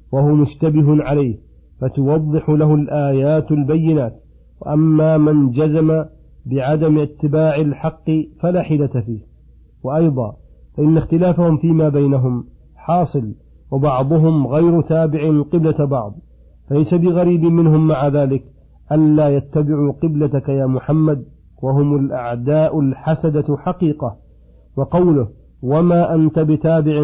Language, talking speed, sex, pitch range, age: Arabic, 100 wpm, male, 135-160 Hz, 50-69